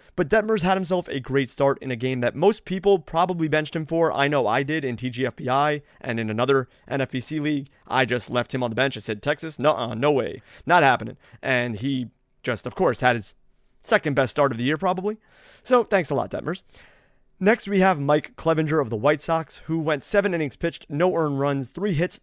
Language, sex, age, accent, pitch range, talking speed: English, male, 30-49, American, 130-175 Hz, 220 wpm